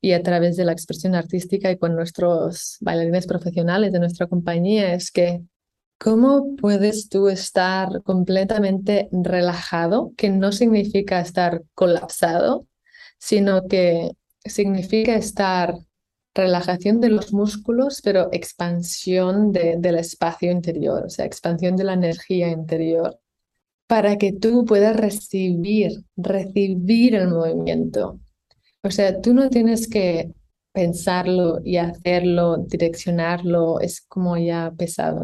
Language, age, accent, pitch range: English, 20-39, Spanish, 175-205 Hz